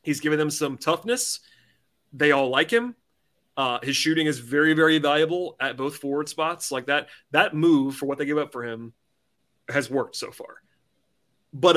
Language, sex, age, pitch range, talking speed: English, male, 30-49, 130-160 Hz, 185 wpm